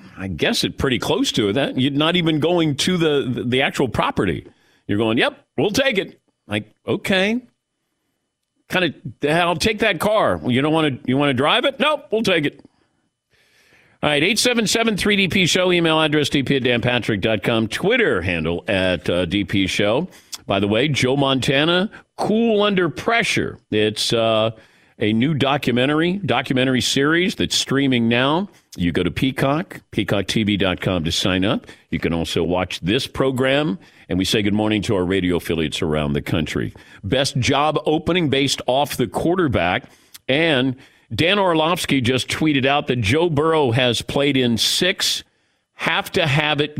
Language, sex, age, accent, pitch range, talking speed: English, male, 50-69, American, 110-160 Hz, 165 wpm